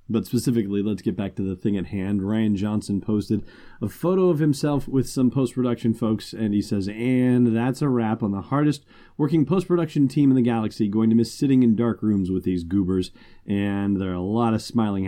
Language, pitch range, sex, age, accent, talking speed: English, 100-120 Hz, male, 30-49, American, 215 wpm